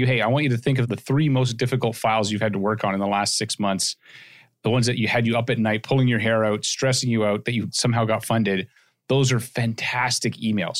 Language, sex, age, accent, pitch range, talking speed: English, male, 30-49, American, 105-130 Hz, 260 wpm